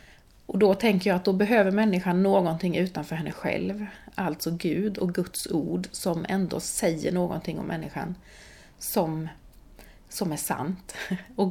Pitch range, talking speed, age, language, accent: 170-205 Hz, 145 wpm, 30-49, Swedish, native